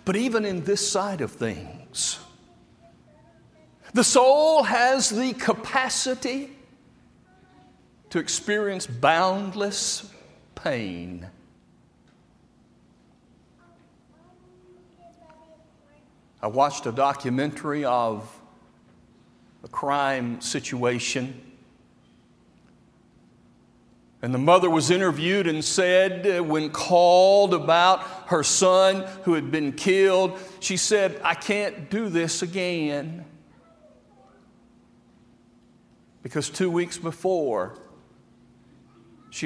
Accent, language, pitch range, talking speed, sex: American, English, 125-190 Hz, 80 wpm, male